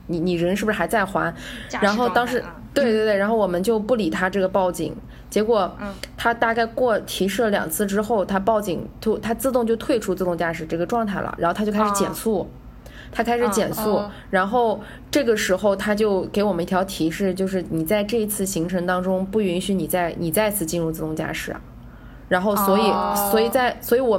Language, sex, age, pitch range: Chinese, female, 20-39, 175-215 Hz